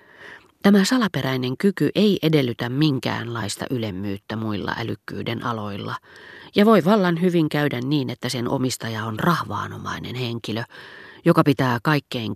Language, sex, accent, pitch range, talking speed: Finnish, female, native, 115-155 Hz, 120 wpm